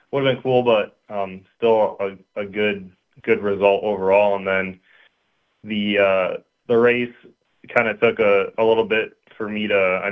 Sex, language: male, English